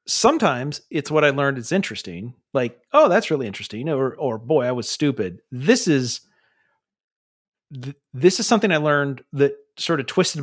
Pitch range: 125-155 Hz